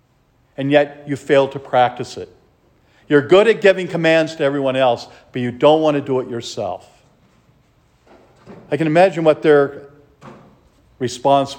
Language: English